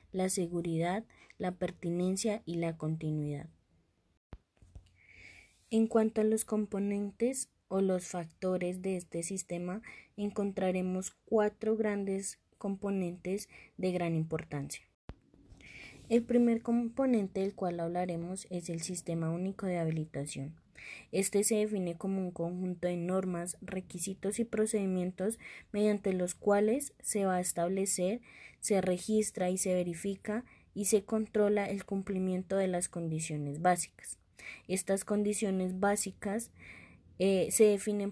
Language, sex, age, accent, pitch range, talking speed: Spanish, female, 20-39, Colombian, 170-205 Hz, 120 wpm